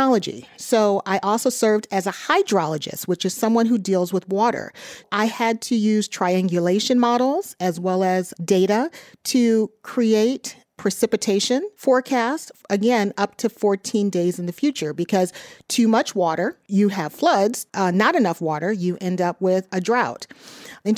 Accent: American